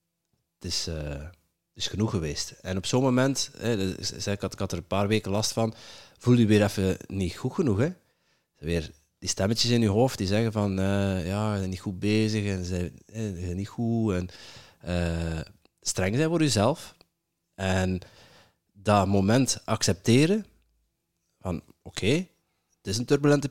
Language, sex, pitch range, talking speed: Dutch, male, 90-120 Hz, 175 wpm